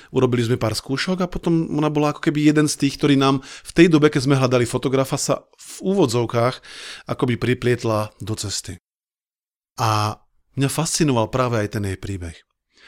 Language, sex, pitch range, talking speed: Slovak, male, 115-155 Hz, 170 wpm